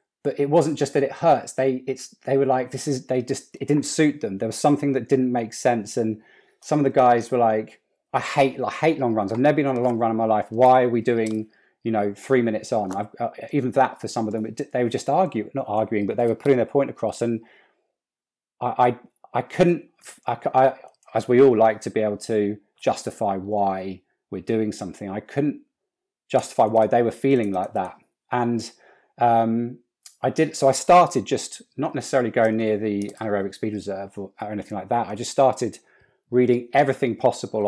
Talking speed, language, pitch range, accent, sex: 215 wpm, English, 105-135 Hz, British, male